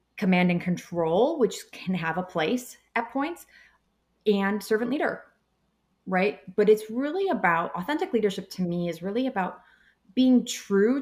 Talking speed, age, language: 145 wpm, 30-49, English